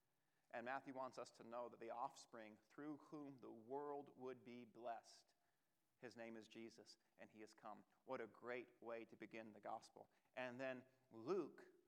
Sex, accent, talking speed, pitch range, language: male, American, 175 wpm, 110-135 Hz, English